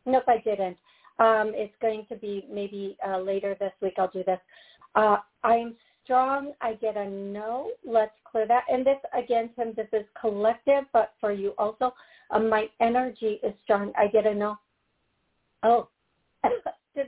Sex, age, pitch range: female, 50-69, 210-280 Hz